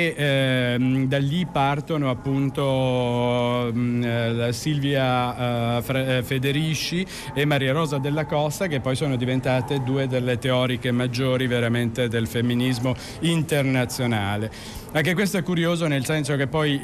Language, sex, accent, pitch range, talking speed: Italian, male, native, 130-155 Hz, 115 wpm